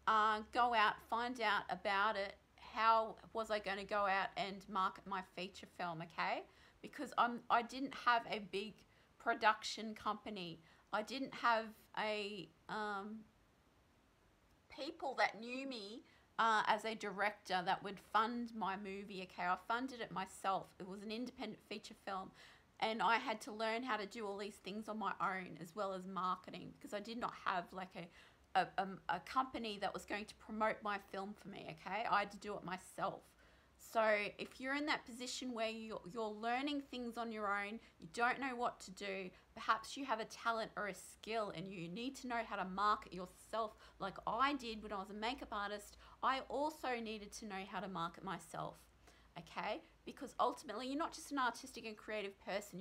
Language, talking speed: English, 190 wpm